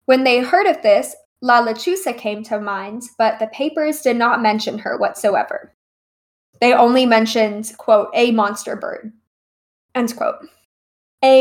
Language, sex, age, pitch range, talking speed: English, female, 10-29, 220-265 Hz, 145 wpm